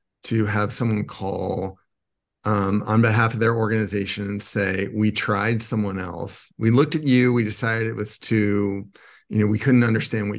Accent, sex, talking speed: American, male, 180 wpm